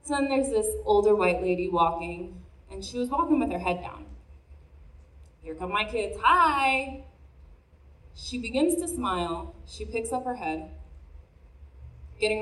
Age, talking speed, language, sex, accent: 20-39, 150 wpm, English, female, American